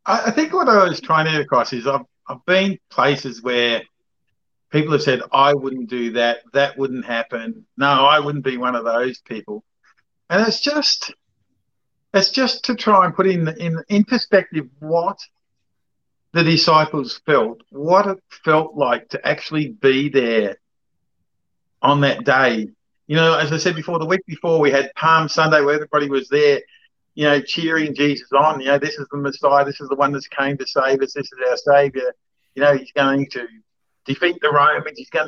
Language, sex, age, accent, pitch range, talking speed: English, male, 50-69, Australian, 140-190 Hz, 190 wpm